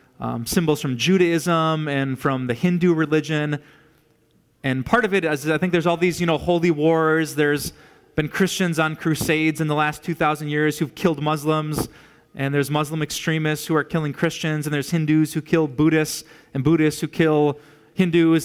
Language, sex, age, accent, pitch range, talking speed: English, male, 20-39, American, 145-170 Hz, 180 wpm